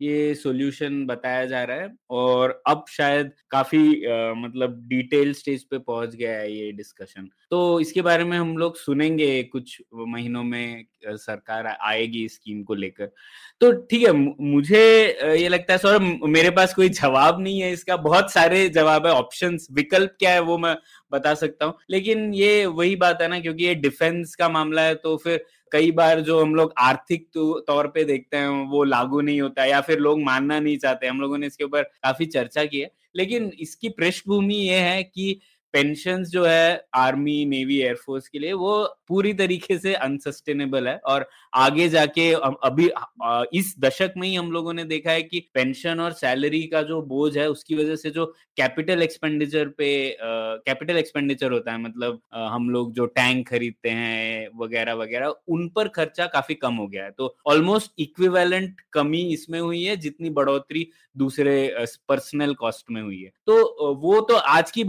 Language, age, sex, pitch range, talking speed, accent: Hindi, 20-39, male, 130-170 Hz, 185 wpm, native